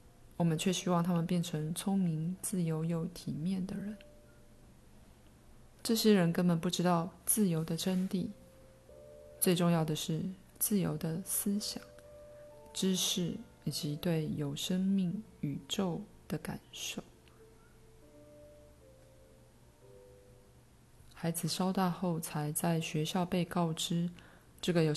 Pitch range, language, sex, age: 155-185 Hz, Chinese, female, 20-39